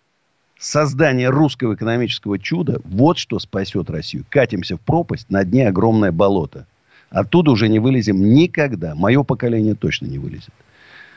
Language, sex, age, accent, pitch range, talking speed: Russian, male, 50-69, native, 95-130 Hz, 135 wpm